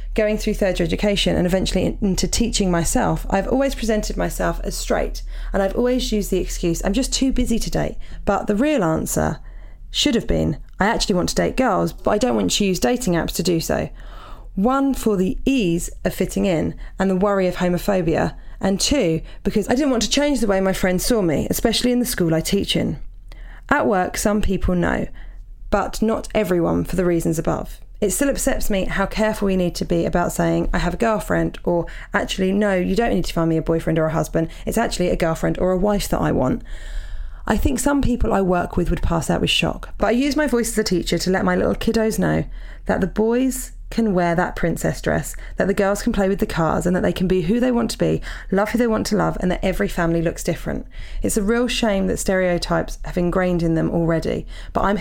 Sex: female